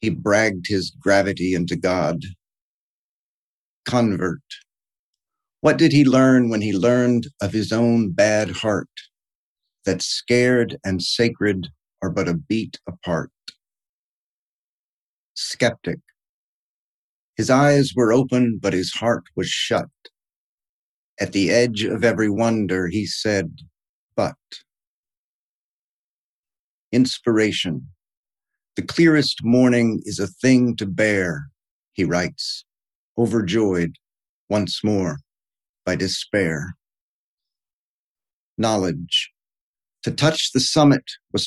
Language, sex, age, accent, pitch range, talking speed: English, male, 50-69, American, 95-125 Hz, 100 wpm